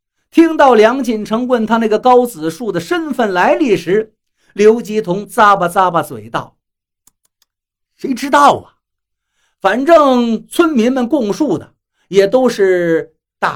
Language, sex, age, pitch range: Chinese, male, 50-69, 185-265 Hz